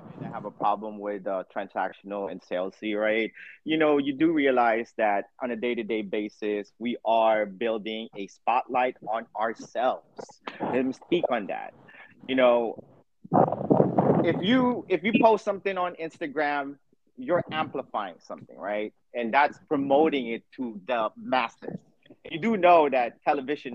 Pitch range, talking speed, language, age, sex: 120-185 Hz, 145 wpm, English, 30-49, male